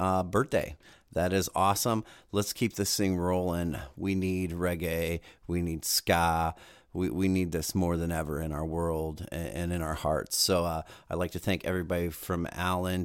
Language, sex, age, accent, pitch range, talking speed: English, male, 40-59, American, 80-95 Hz, 180 wpm